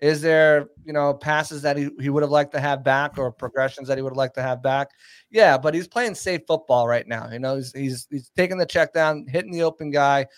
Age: 30-49